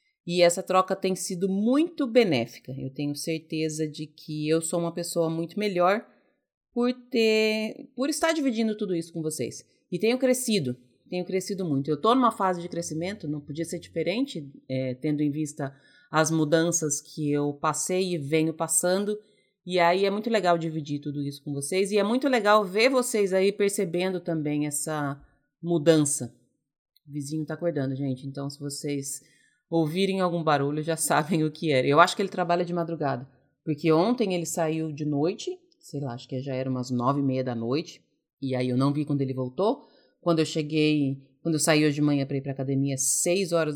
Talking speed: 190 wpm